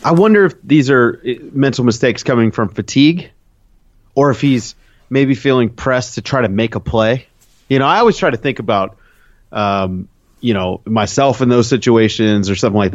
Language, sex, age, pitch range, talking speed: English, male, 30-49, 100-125 Hz, 185 wpm